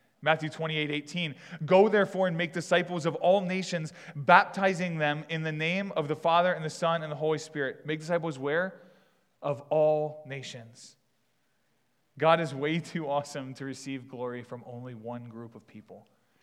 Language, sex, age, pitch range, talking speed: English, male, 20-39, 130-160 Hz, 170 wpm